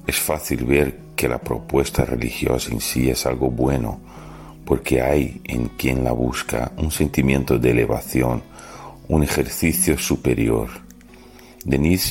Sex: male